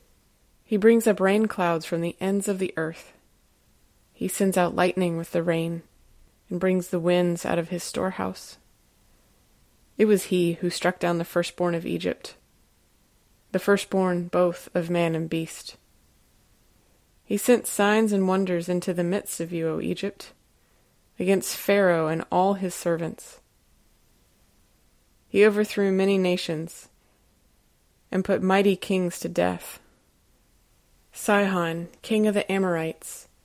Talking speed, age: 135 wpm, 20-39